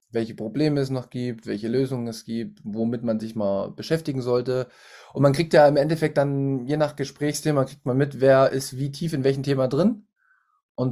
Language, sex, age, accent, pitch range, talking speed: German, male, 20-39, German, 110-130 Hz, 205 wpm